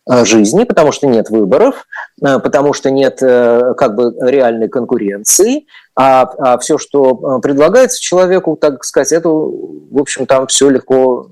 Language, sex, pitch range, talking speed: Russian, male, 140-200 Hz, 140 wpm